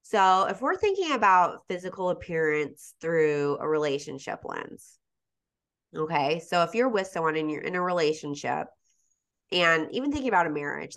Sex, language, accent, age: female, English, American, 20-39